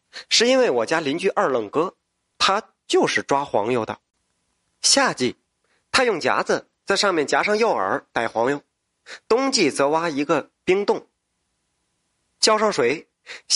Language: Chinese